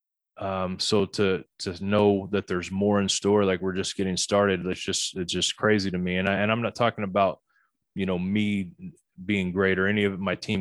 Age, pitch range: 20-39, 95-105 Hz